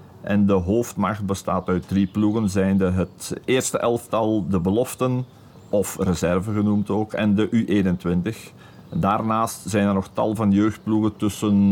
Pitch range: 95-115 Hz